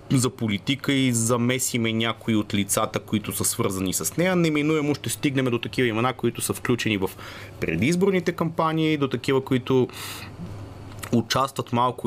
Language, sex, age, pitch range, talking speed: Bulgarian, male, 30-49, 110-140 Hz, 145 wpm